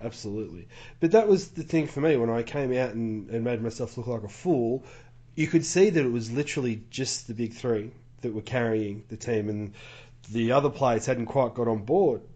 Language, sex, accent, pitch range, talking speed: English, male, Australian, 115-130 Hz, 220 wpm